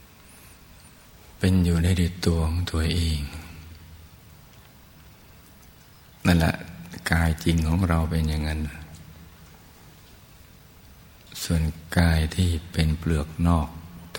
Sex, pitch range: male, 80-85 Hz